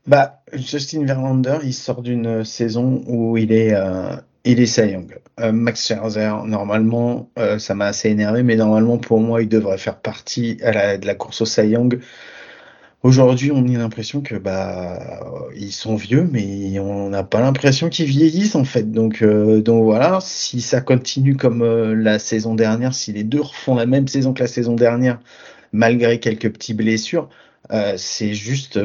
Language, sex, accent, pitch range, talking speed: French, male, French, 110-130 Hz, 175 wpm